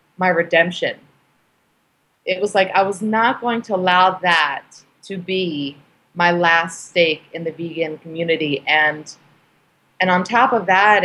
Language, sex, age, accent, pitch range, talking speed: English, female, 30-49, American, 155-180 Hz, 145 wpm